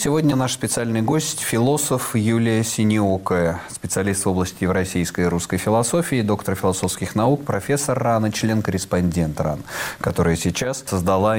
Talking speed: 130 wpm